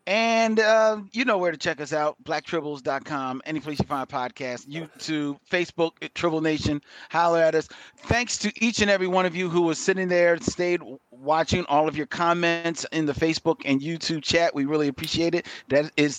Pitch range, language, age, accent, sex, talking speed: 135-175 Hz, English, 40-59, American, male, 200 wpm